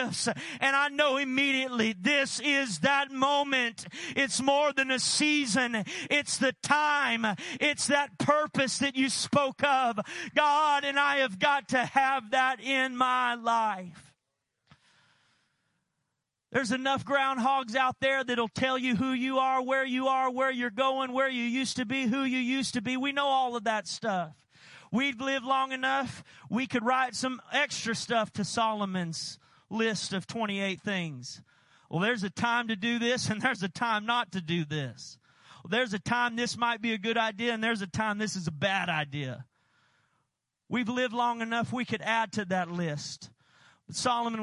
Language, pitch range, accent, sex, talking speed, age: English, 190-265 Hz, American, male, 175 wpm, 40-59